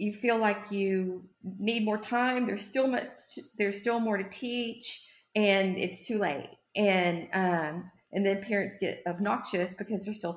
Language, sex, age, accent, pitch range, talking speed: English, female, 40-59, American, 180-220 Hz, 170 wpm